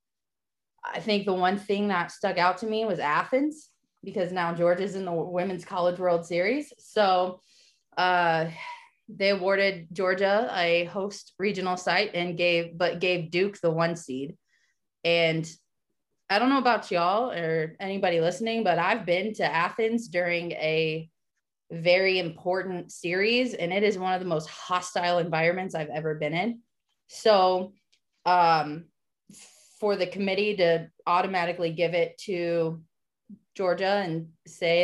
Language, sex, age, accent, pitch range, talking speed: English, female, 20-39, American, 165-195 Hz, 145 wpm